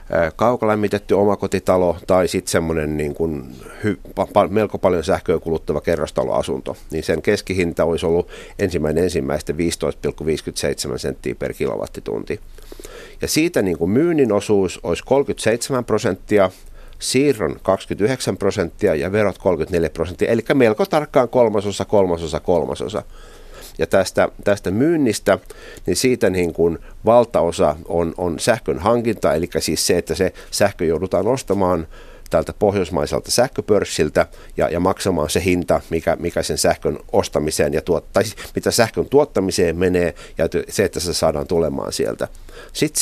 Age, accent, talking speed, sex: 60-79, native, 130 wpm, male